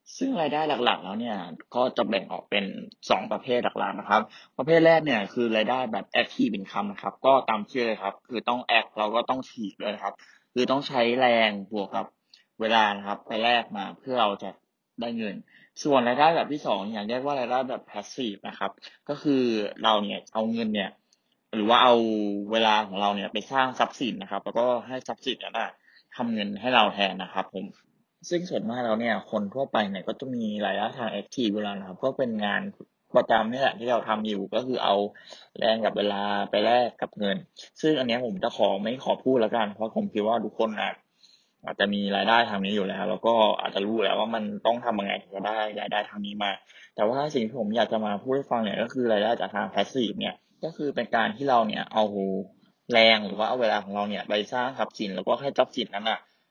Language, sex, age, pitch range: English, male, 20-39, 100-120 Hz